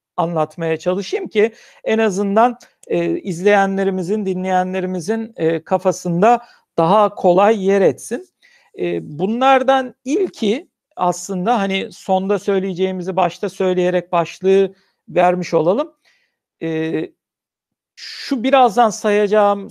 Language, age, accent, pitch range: Turkish, 60-79, native, 180-225 Hz